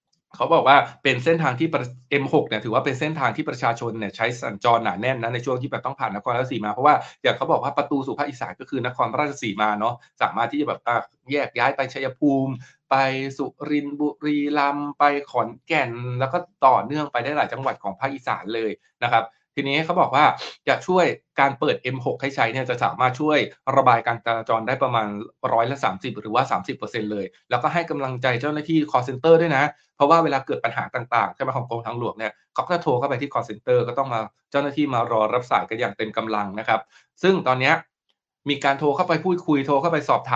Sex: male